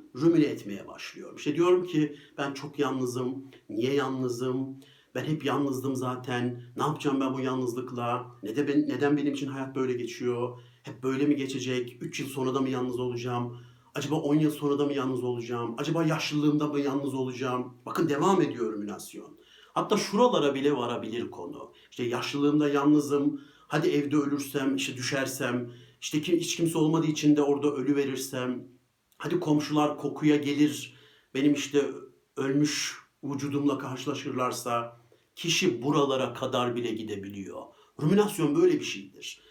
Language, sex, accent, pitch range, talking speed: Turkish, male, native, 130-160 Hz, 145 wpm